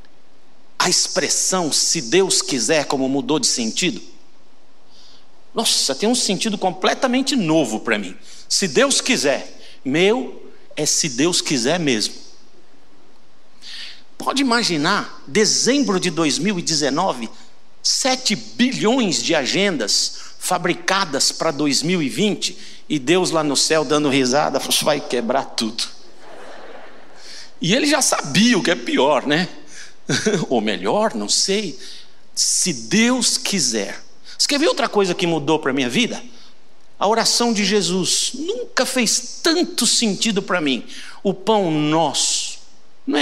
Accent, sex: Brazilian, male